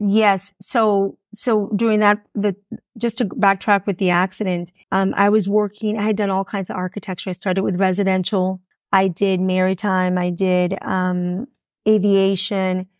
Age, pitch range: 30-49, 190-210 Hz